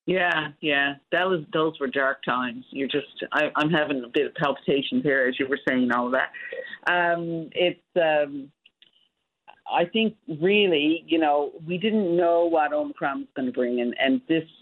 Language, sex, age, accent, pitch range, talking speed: English, female, 50-69, American, 125-165 Hz, 185 wpm